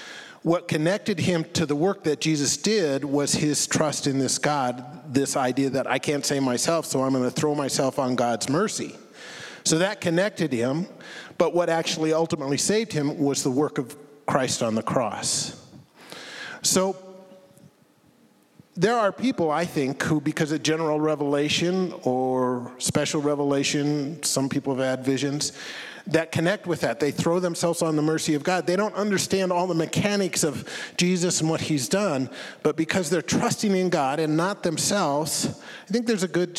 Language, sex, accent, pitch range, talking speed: English, male, American, 140-175 Hz, 175 wpm